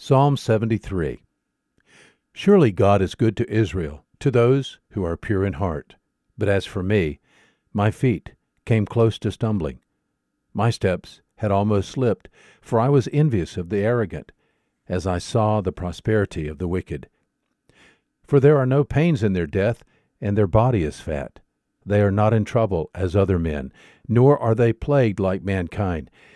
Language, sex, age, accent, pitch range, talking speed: English, male, 50-69, American, 95-120 Hz, 165 wpm